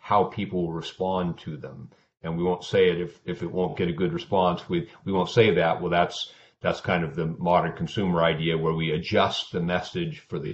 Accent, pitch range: American, 90-115 Hz